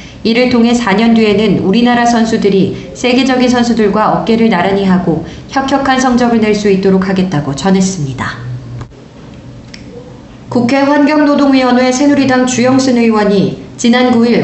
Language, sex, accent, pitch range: Korean, female, native, 190-245 Hz